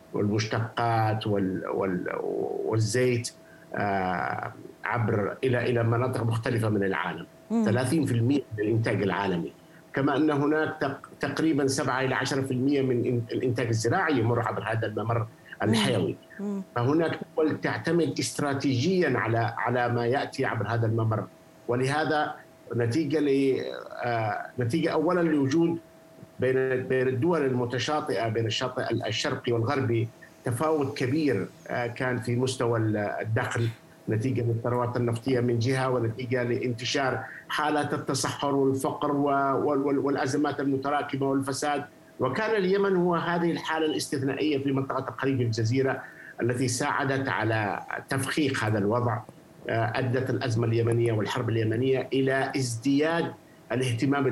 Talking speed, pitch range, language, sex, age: 100 wpm, 115-145 Hz, Arabic, male, 50-69